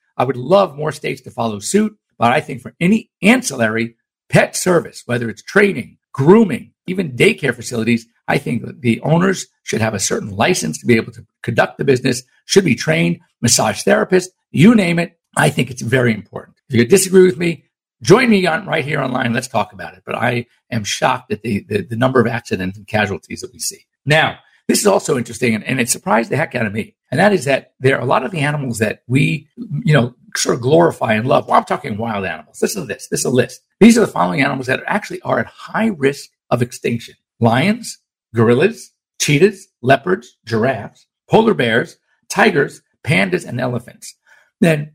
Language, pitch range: English, 120-190 Hz